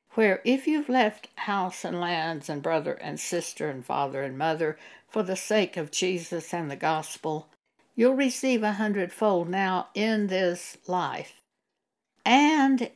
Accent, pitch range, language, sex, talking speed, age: American, 165-220 Hz, English, female, 150 wpm, 60-79